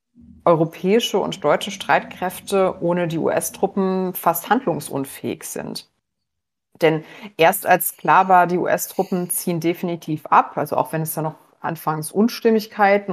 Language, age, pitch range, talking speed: German, 30-49, 155-185 Hz, 130 wpm